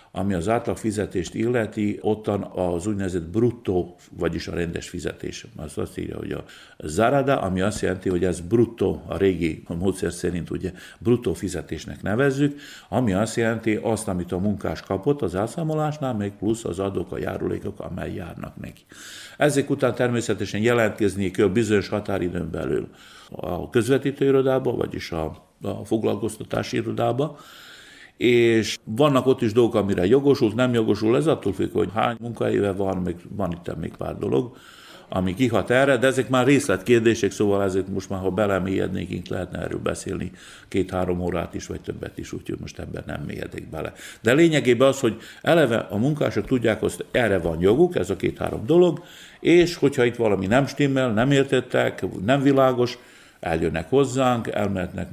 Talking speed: 160 wpm